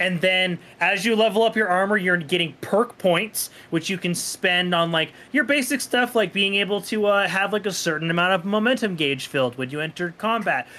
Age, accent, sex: 30-49, American, male